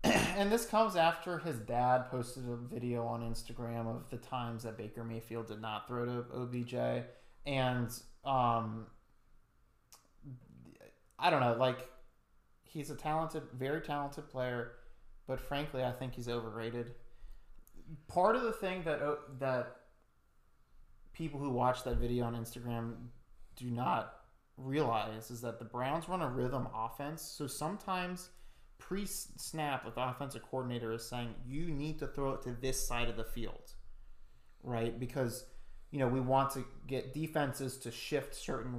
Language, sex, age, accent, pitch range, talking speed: English, male, 30-49, American, 115-145 Hz, 150 wpm